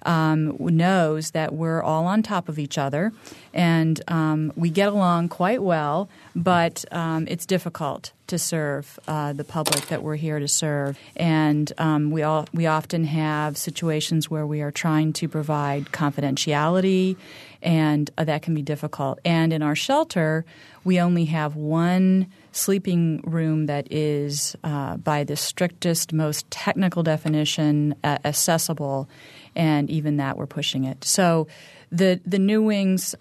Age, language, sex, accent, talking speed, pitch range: 30-49, English, female, American, 150 wpm, 150-170 Hz